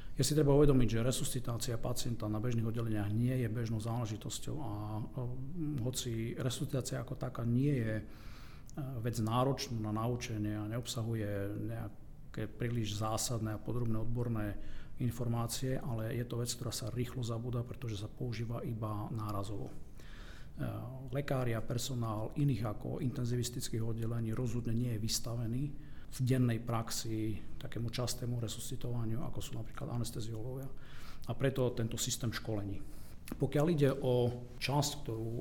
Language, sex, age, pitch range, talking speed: Slovak, male, 40-59, 115-130 Hz, 135 wpm